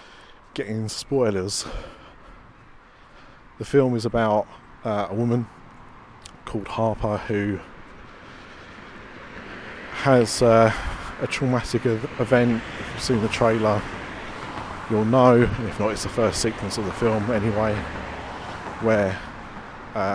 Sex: male